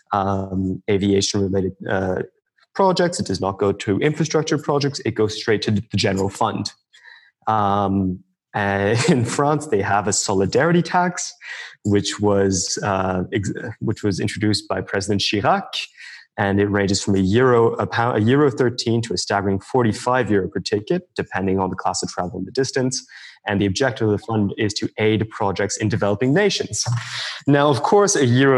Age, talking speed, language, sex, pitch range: 20-39, 170 wpm, English, male, 95-130 Hz